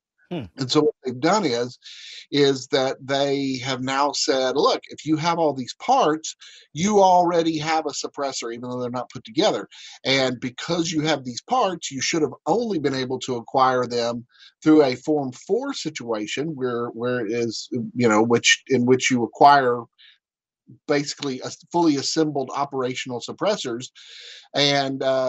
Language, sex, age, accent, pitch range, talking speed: English, male, 50-69, American, 125-150 Hz, 165 wpm